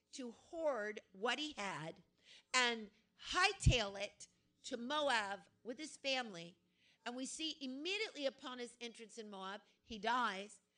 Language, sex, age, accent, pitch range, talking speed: English, female, 50-69, American, 235-305 Hz, 135 wpm